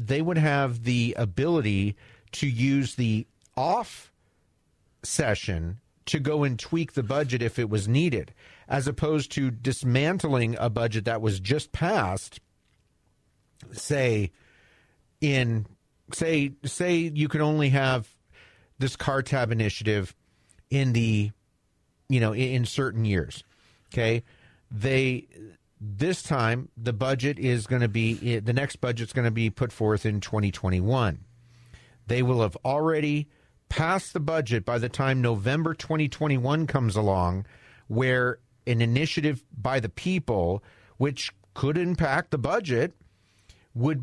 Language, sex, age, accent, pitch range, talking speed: English, male, 40-59, American, 110-140 Hz, 130 wpm